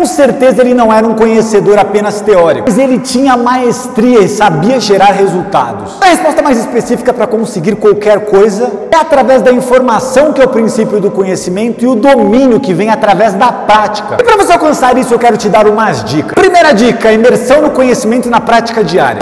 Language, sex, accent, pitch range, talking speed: Portuguese, male, Brazilian, 215-275 Hz, 195 wpm